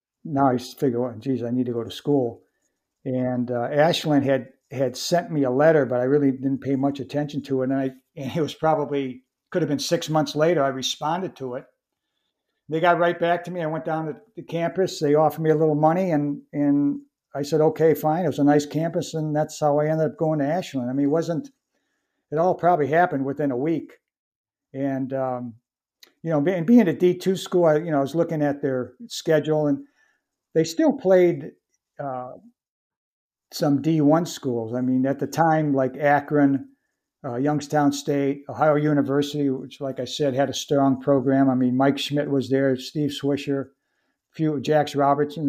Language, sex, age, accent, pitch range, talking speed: English, male, 60-79, American, 135-160 Hz, 200 wpm